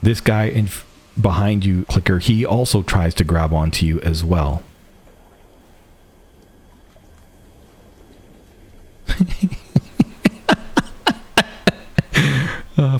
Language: English